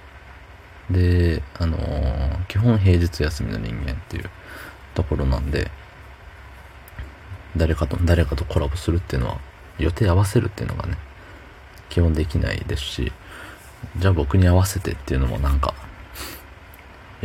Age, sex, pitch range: 40-59, male, 75-95 Hz